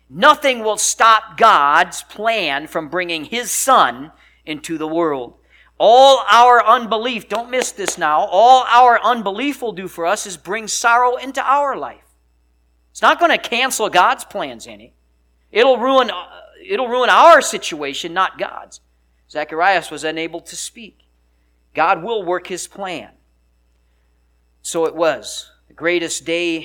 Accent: American